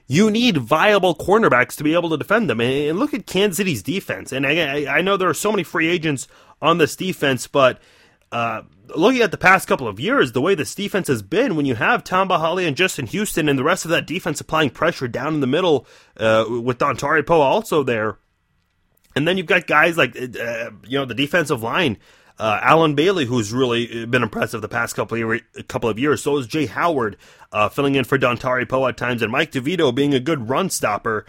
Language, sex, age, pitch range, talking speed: English, male, 30-49, 125-170 Hz, 220 wpm